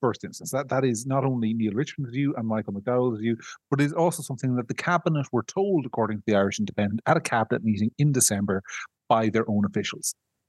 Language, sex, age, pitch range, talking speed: English, male, 30-49, 105-135 Hz, 215 wpm